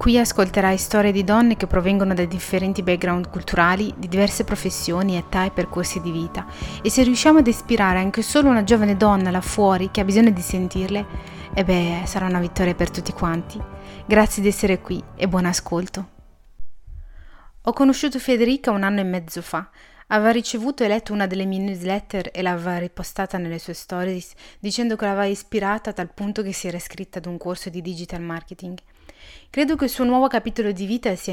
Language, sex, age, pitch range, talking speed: Italian, female, 30-49, 180-225 Hz, 190 wpm